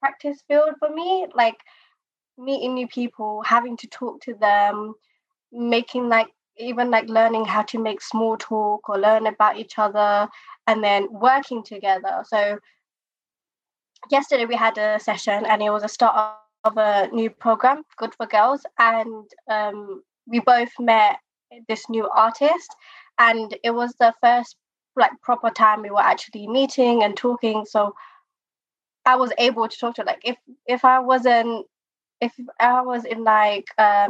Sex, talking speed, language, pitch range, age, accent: female, 160 wpm, English, 215-255 Hz, 20-39, British